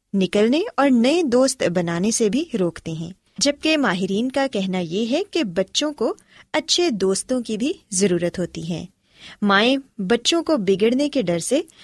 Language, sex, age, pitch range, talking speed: Urdu, female, 20-39, 190-275 Hz, 160 wpm